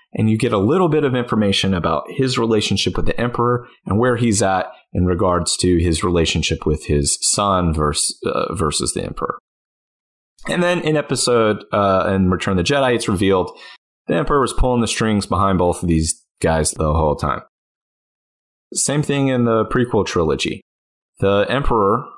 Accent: American